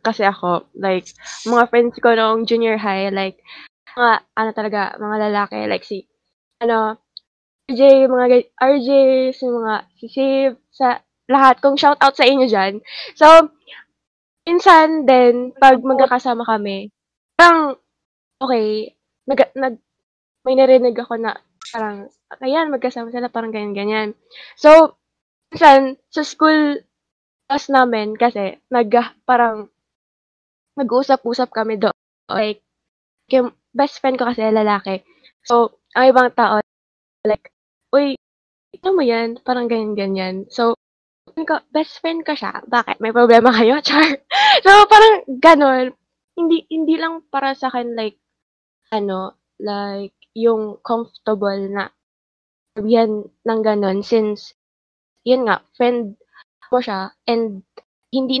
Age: 10-29